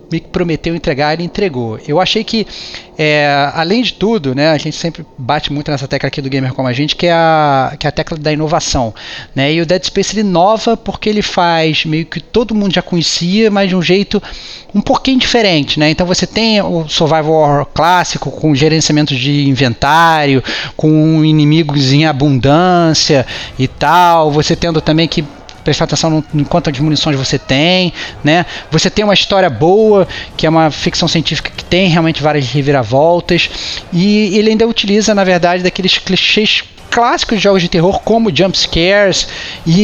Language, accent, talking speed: Portuguese, Brazilian, 180 wpm